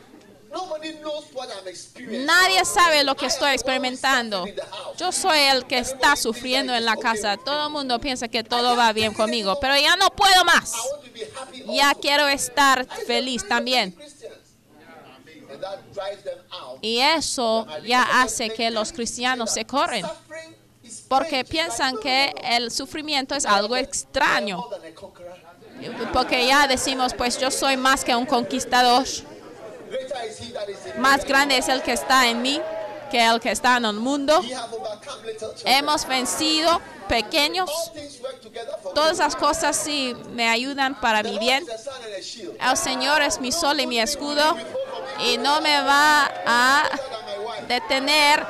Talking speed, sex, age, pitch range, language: 125 wpm, female, 20-39, 240-295 Hz, Spanish